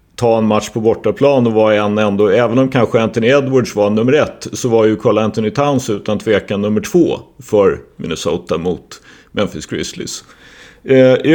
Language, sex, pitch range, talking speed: Swedish, male, 110-135 Hz, 180 wpm